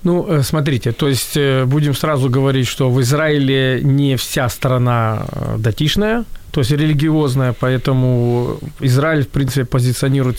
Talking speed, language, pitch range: 125 wpm, Ukrainian, 125-155 Hz